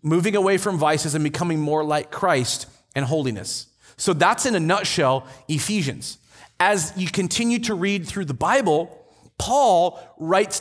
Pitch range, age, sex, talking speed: 150-205 Hz, 30-49, male, 155 wpm